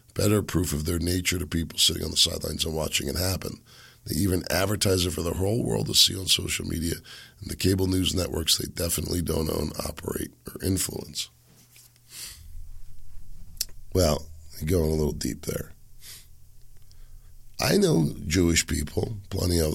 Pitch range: 80-100 Hz